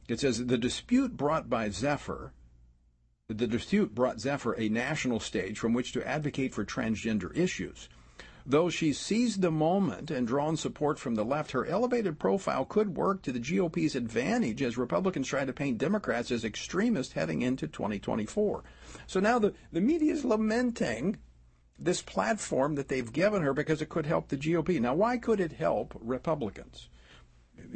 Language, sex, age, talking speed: English, male, 50-69, 170 wpm